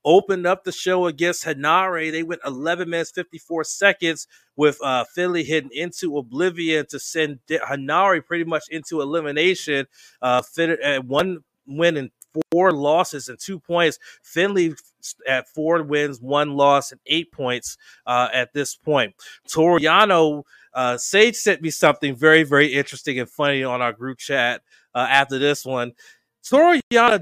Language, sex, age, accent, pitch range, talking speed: English, male, 30-49, American, 145-185 Hz, 155 wpm